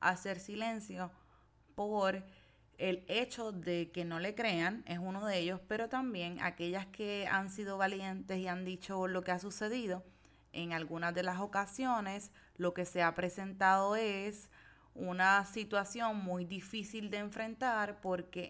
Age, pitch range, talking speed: 20-39, 175-205 Hz, 150 wpm